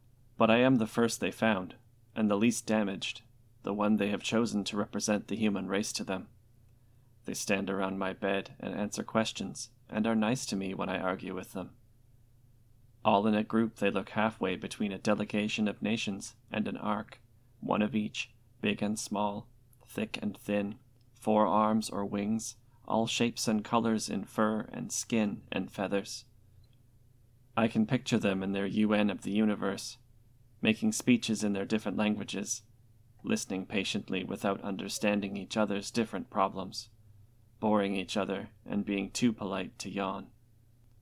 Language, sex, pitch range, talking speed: English, male, 105-115 Hz, 165 wpm